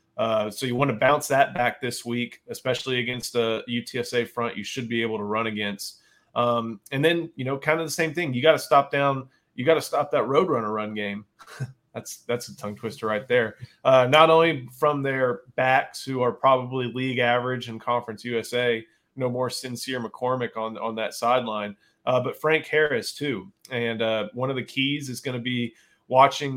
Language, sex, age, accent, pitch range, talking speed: English, male, 20-39, American, 115-130 Hz, 205 wpm